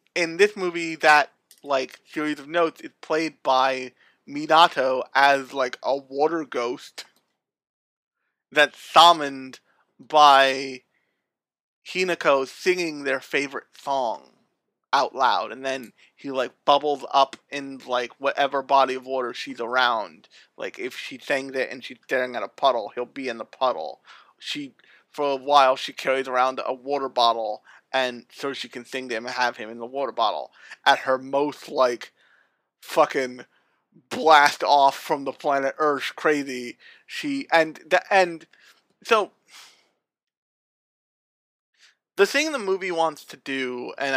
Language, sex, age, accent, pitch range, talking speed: English, male, 30-49, American, 130-160 Hz, 135 wpm